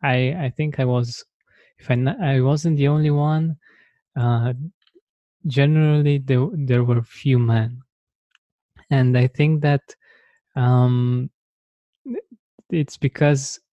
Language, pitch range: English, 120-135 Hz